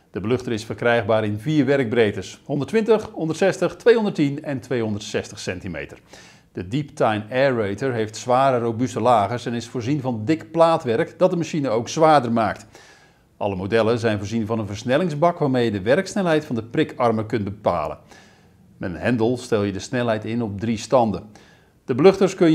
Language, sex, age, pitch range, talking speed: Dutch, male, 40-59, 110-160 Hz, 170 wpm